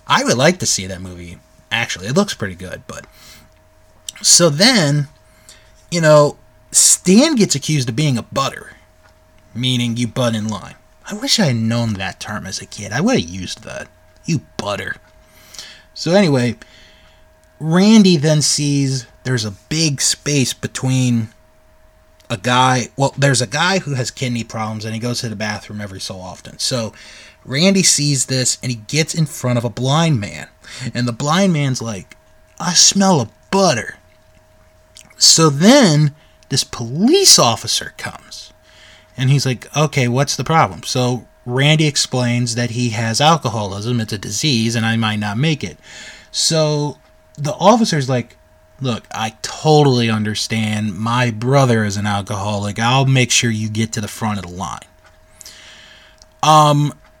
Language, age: English, 30-49